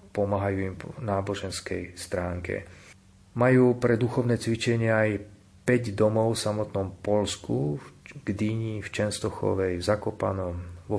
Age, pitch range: 40-59, 100-110 Hz